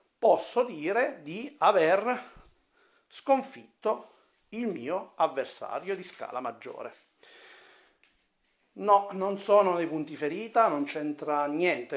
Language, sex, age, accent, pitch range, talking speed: Italian, male, 40-59, native, 145-205 Hz, 100 wpm